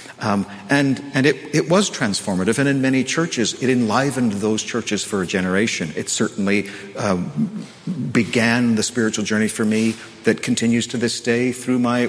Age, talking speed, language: 50-69, 175 wpm, English